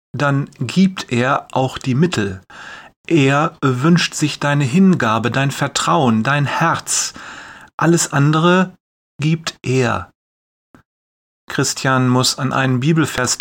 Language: German